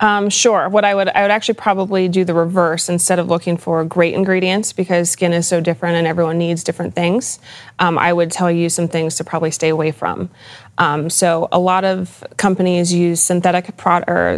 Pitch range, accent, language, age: 165-175 Hz, American, English, 30-49